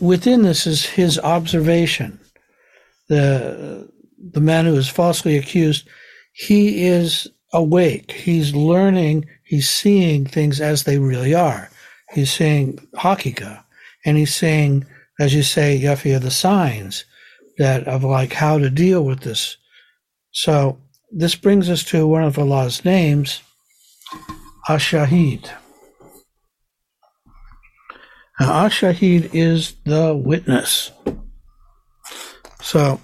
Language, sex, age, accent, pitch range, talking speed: English, male, 60-79, American, 140-170 Hz, 110 wpm